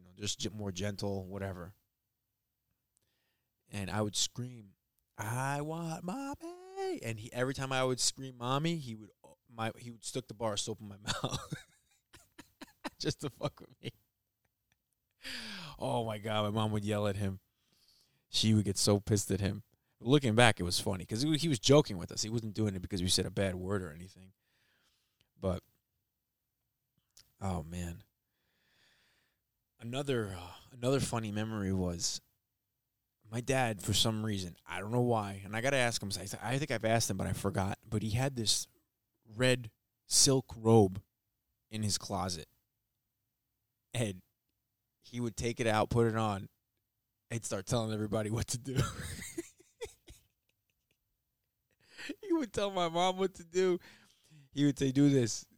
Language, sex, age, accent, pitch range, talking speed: English, male, 20-39, American, 105-125 Hz, 160 wpm